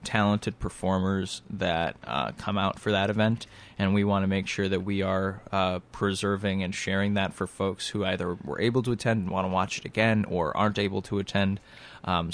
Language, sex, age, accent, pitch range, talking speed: English, male, 20-39, American, 95-105 Hz, 210 wpm